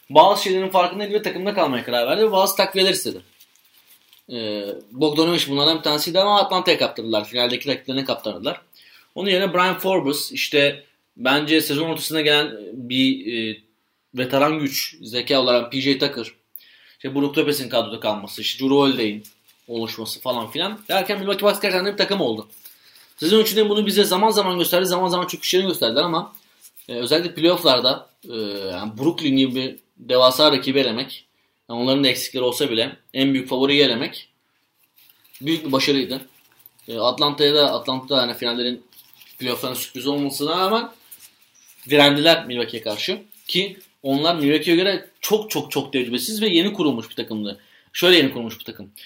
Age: 30-49